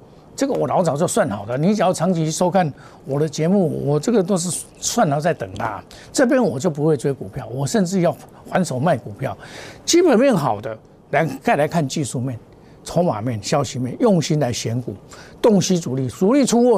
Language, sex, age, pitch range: Chinese, male, 50-69, 135-185 Hz